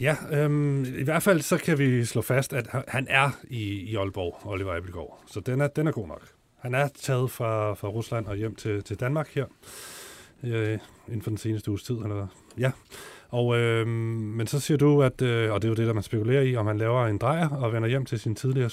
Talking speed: 235 wpm